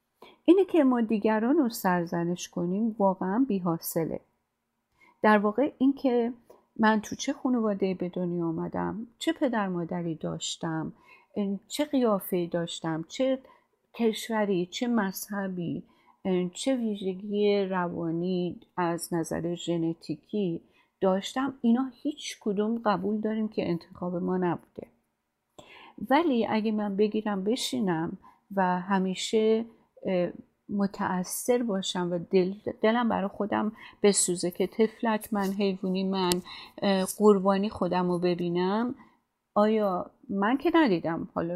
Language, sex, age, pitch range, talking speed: Persian, female, 50-69, 175-220 Hz, 110 wpm